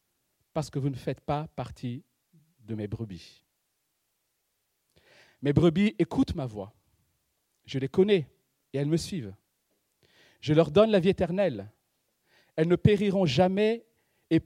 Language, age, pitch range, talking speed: French, 50-69, 125-180 Hz, 135 wpm